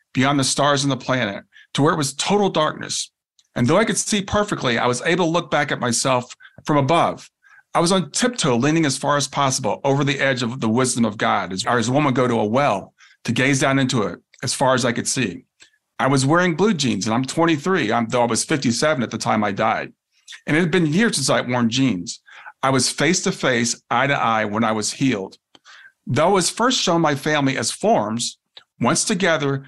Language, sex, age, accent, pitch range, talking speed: English, male, 40-59, American, 120-165 Hz, 225 wpm